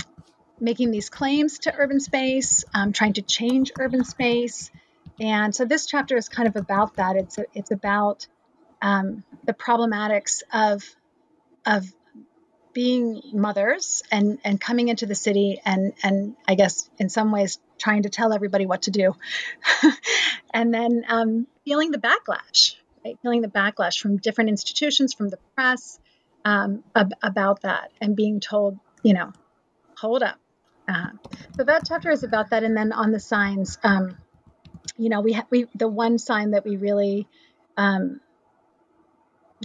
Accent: American